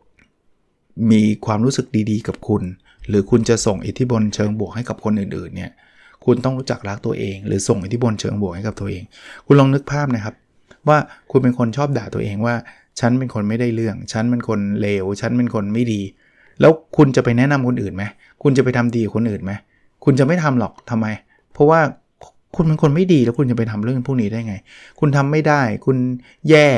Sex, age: male, 20-39